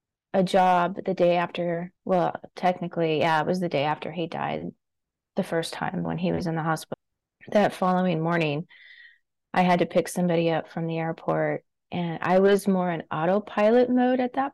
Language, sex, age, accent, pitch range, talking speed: English, female, 30-49, American, 170-200 Hz, 185 wpm